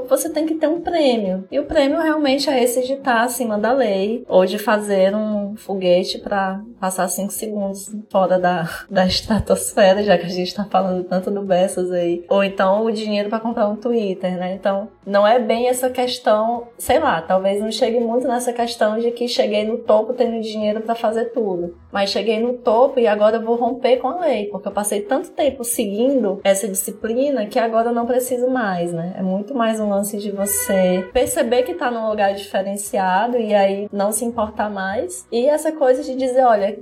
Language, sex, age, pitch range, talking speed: Portuguese, female, 10-29, 195-245 Hz, 205 wpm